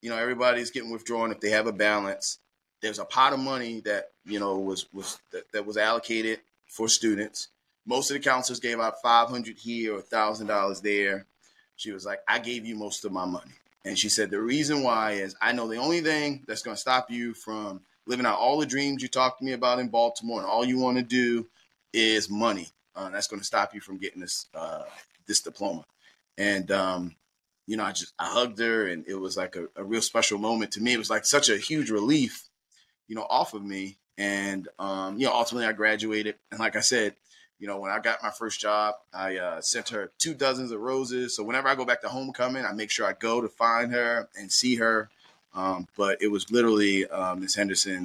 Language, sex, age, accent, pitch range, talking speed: English, male, 30-49, American, 105-125 Hz, 230 wpm